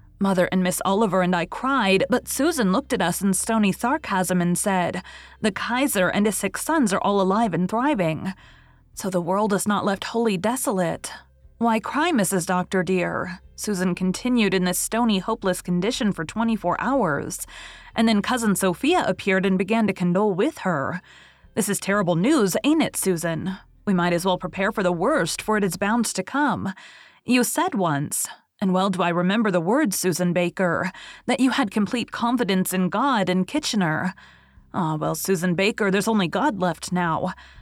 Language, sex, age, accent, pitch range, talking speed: English, female, 30-49, American, 180-225 Hz, 180 wpm